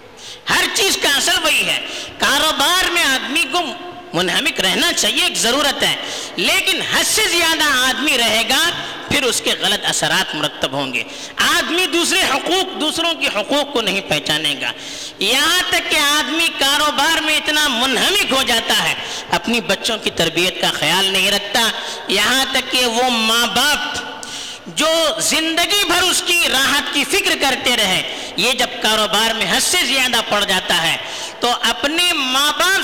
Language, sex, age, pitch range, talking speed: Urdu, female, 50-69, 235-345 Hz, 160 wpm